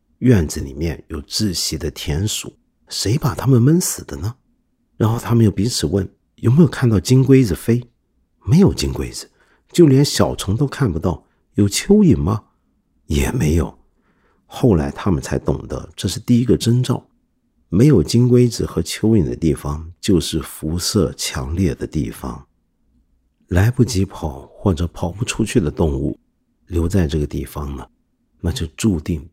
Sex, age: male, 50-69